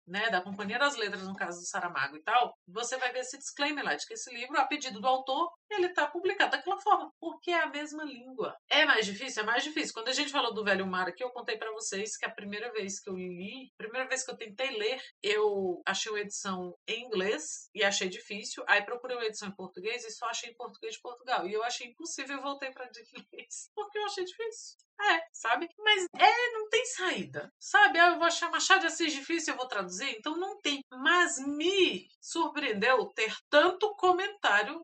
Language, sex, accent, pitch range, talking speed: Portuguese, female, Brazilian, 215-335 Hz, 220 wpm